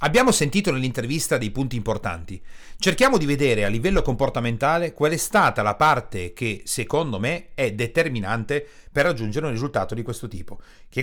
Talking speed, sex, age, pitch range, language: 165 wpm, male, 40-59, 115-170 Hz, Italian